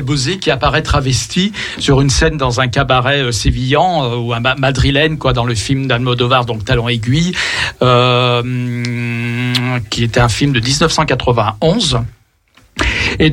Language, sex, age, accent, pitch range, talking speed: French, male, 60-79, French, 125-155 Hz, 135 wpm